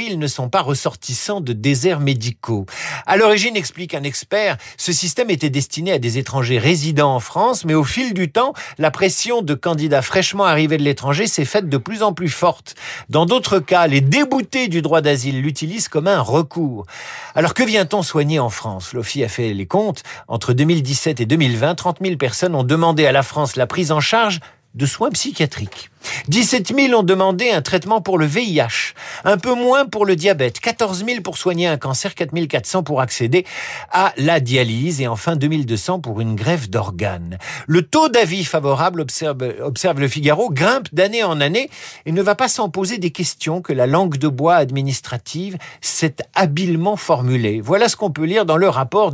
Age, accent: 50-69, French